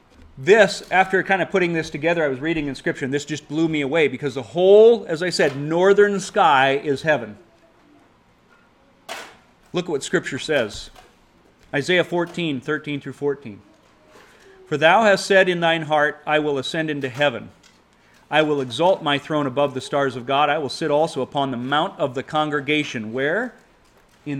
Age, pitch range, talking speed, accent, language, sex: 40-59, 130-160 Hz, 175 wpm, American, English, male